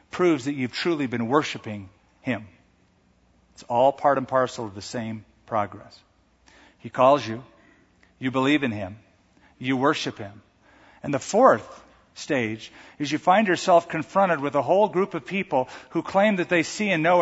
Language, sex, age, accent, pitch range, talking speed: English, male, 50-69, American, 110-150 Hz, 165 wpm